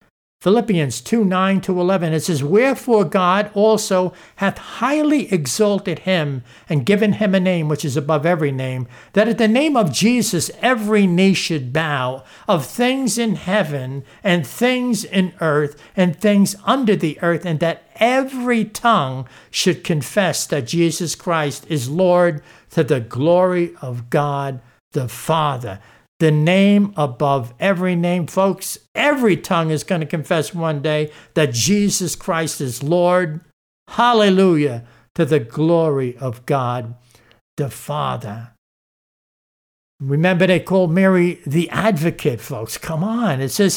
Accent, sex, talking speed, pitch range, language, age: American, male, 140 wpm, 150-205 Hz, English, 60-79